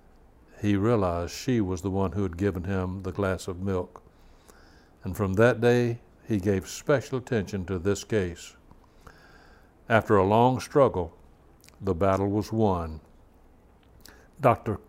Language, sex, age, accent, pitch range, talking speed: English, male, 60-79, American, 90-110 Hz, 135 wpm